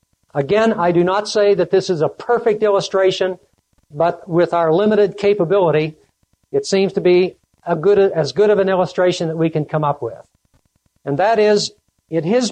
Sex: male